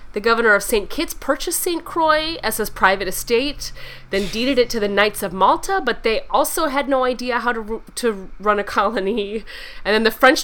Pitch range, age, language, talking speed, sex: 195-275 Hz, 20-39, English, 205 wpm, female